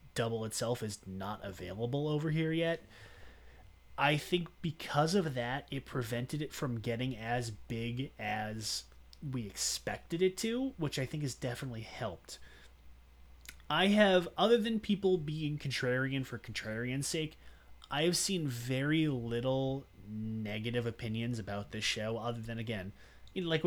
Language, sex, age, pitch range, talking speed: English, male, 30-49, 105-155 Hz, 140 wpm